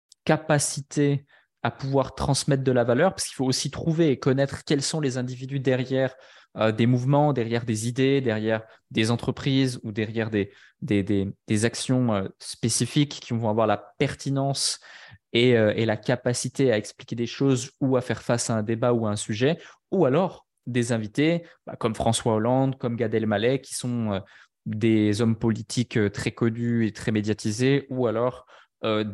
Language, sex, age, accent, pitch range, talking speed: French, male, 20-39, French, 110-130 Hz, 175 wpm